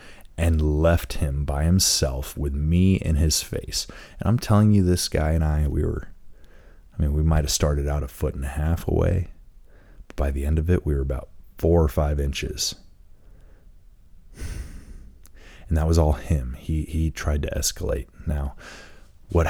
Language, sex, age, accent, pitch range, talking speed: English, male, 30-49, American, 75-100 Hz, 180 wpm